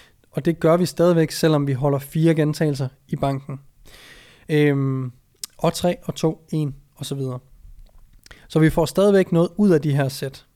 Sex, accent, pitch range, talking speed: male, native, 140-165 Hz, 175 wpm